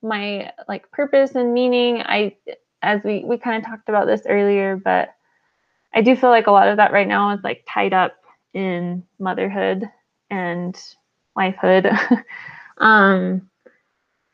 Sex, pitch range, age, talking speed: female, 190-235 Hz, 20-39, 145 wpm